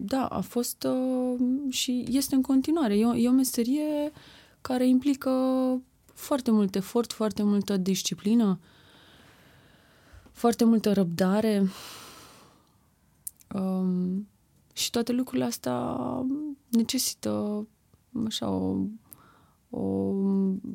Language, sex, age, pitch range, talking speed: Romanian, female, 20-39, 190-240 Hz, 95 wpm